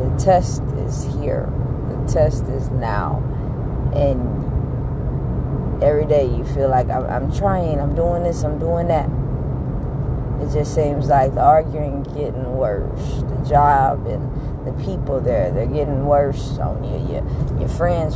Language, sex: English, female